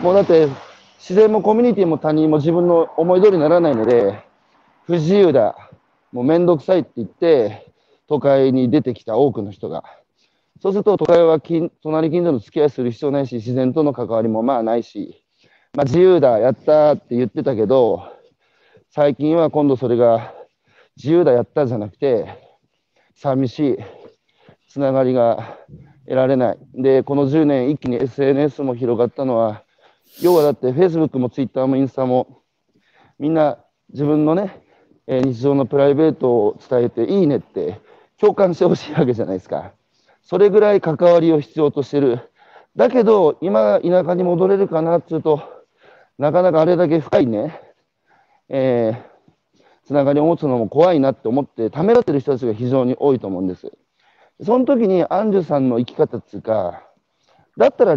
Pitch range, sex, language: 130-170 Hz, male, Japanese